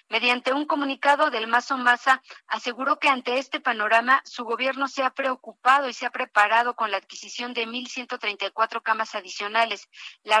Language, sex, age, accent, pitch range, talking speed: Spanish, female, 40-59, Mexican, 220-255 Hz, 160 wpm